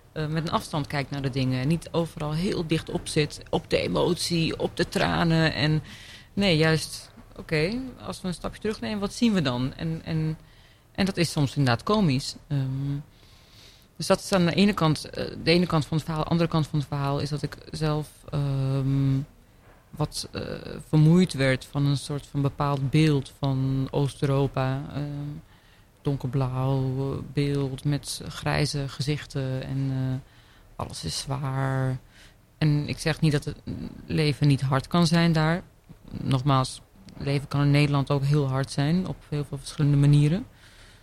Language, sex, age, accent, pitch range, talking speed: Dutch, female, 40-59, Dutch, 130-155 Hz, 160 wpm